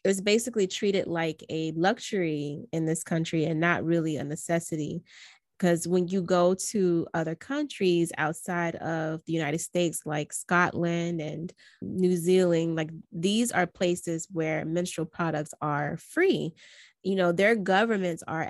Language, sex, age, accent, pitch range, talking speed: English, female, 20-39, American, 160-185 Hz, 150 wpm